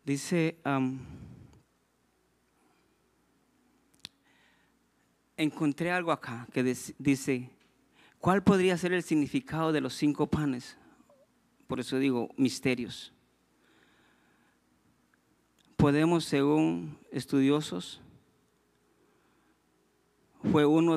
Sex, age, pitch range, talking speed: male, 50-69, 125-150 Hz, 70 wpm